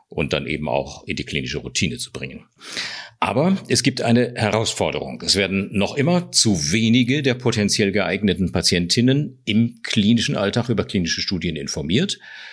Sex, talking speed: male, 155 wpm